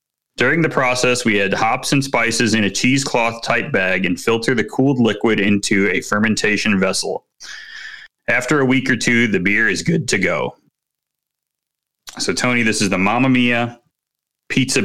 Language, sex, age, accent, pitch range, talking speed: English, male, 30-49, American, 100-130 Hz, 160 wpm